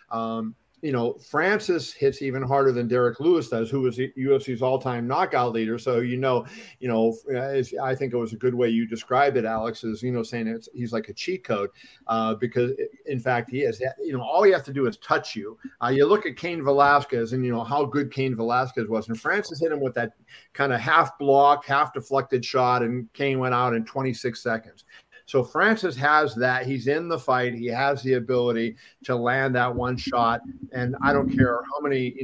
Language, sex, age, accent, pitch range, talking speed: English, male, 50-69, American, 120-140 Hz, 220 wpm